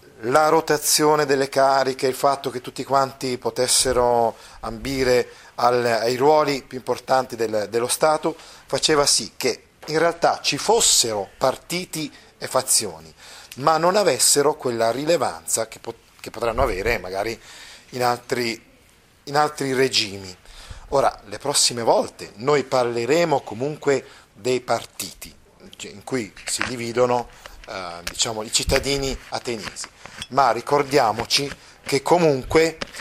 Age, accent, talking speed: 40-59, native, 115 wpm